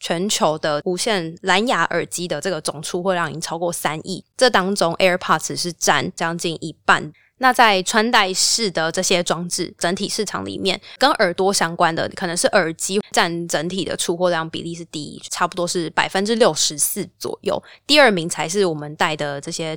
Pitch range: 165-195 Hz